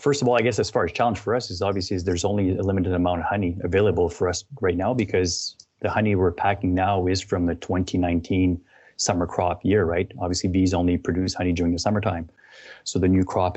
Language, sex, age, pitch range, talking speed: English, male, 30-49, 90-105 Hz, 230 wpm